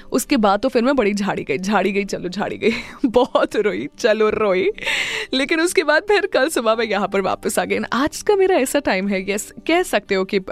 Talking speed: 235 wpm